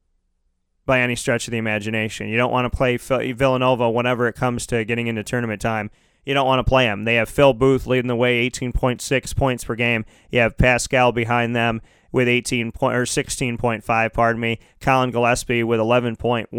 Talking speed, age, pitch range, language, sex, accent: 210 wpm, 30-49, 115-130 Hz, English, male, American